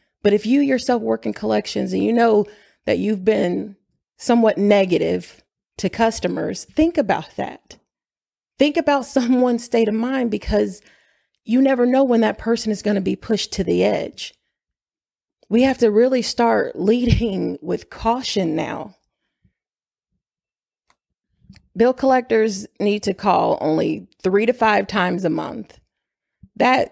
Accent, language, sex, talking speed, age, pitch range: American, English, female, 140 wpm, 30-49, 185-225 Hz